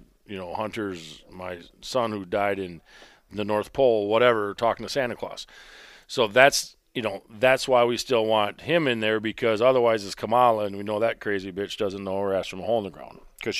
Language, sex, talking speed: English, male, 215 wpm